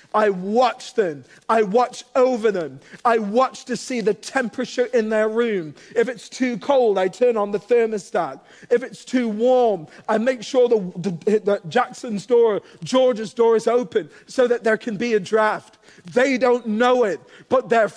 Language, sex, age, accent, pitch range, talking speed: English, male, 40-59, British, 220-260 Hz, 180 wpm